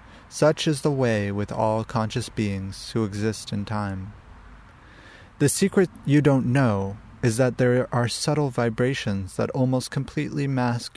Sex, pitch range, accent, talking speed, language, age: male, 105-125 Hz, American, 150 wpm, English, 30-49